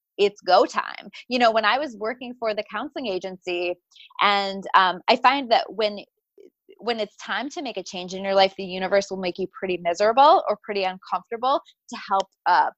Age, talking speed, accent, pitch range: 20-39, 195 wpm, American, 185-245 Hz